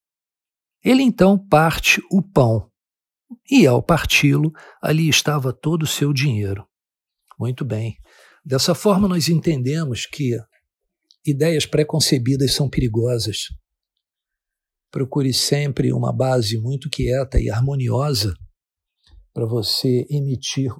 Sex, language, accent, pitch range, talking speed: male, Portuguese, Brazilian, 115-145 Hz, 105 wpm